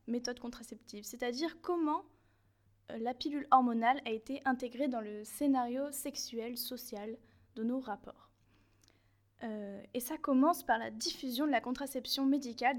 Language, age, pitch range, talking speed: French, 10-29, 225-280 Hz, 135 wpm